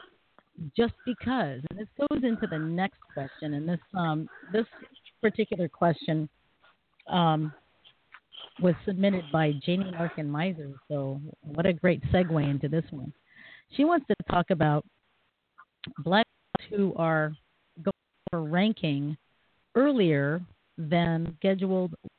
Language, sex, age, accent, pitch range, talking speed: English, female, 40-59, American, 150-195 Hz, 120 wpm